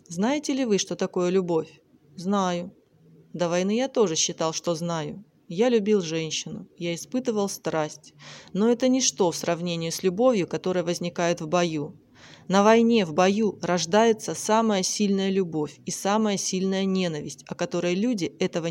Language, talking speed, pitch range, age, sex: Russian, 150 wpm, 175-225 Hz, 20-39, female